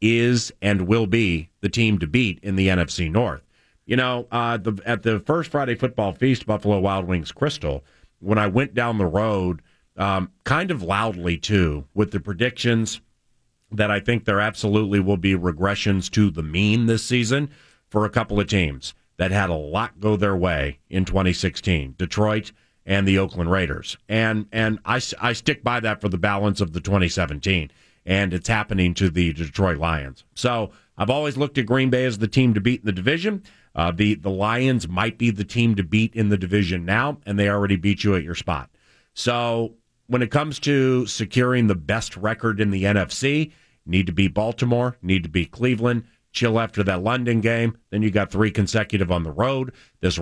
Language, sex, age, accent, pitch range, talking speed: English, male, 40-59, American, 95-120 Hz, 195 wpm